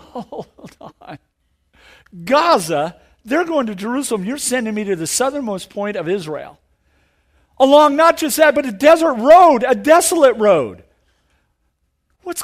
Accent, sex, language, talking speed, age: American, male, English, 135 wpm, 50-69